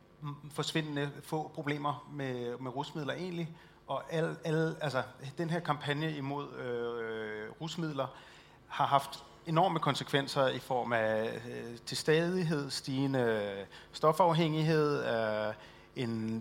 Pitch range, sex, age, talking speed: 125-155 Hz, male, 30-49, 90 wpm